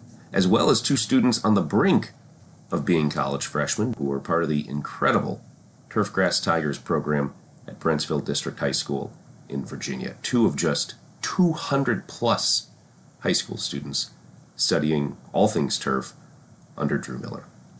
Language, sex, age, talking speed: English, male, 30-49, 140 wpm